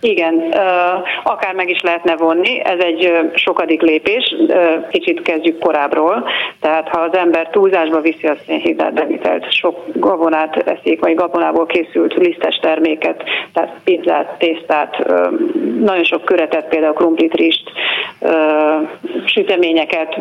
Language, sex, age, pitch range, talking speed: Hungarian, female, 30-49, 160-185 Hz, 120 wpm